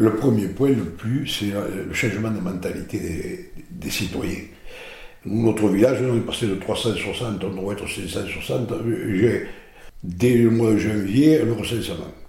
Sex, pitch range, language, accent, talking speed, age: male, 100-130 Hz, French, French, 155 wpm, 60-79